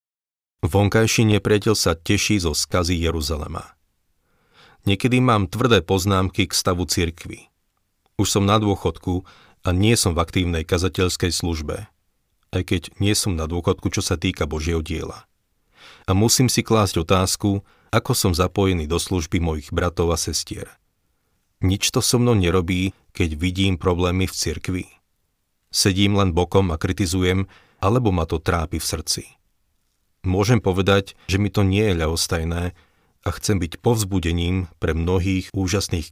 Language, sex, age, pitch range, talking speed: Slovak, male, 40-59, 85-100 Hz, 145 wpm